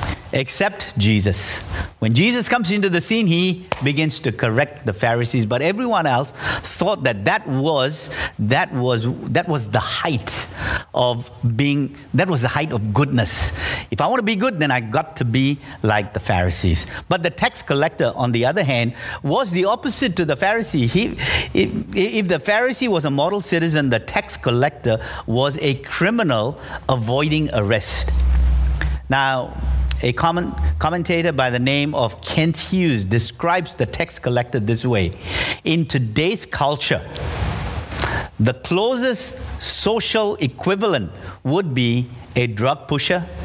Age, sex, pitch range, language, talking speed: 50-69, male, 110-165 Hz, English, 150 wpm